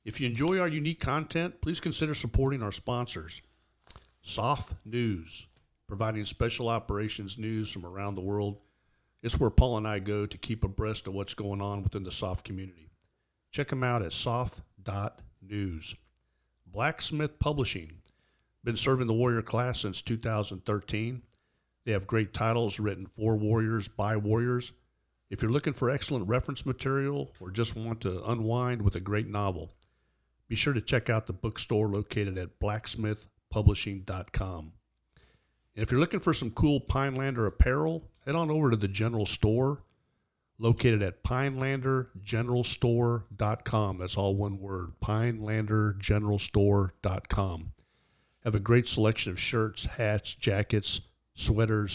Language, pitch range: English, 100-120 Hz